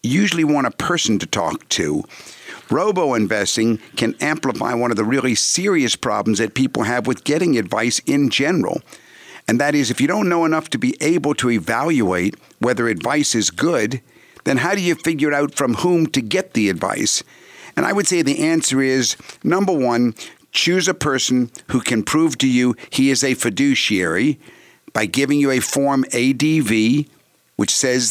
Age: 50-69